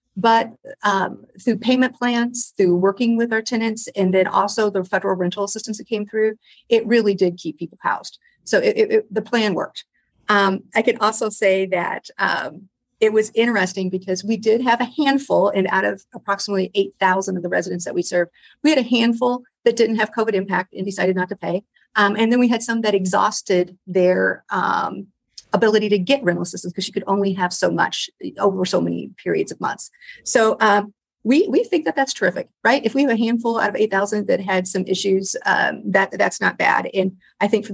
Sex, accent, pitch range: female, American, 190-225 Hz